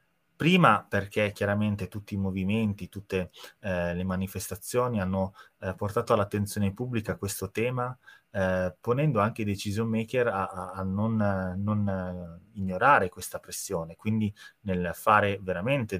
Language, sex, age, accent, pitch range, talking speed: Italian, male, 30-49, native, 90-110 Hz, 130 wpm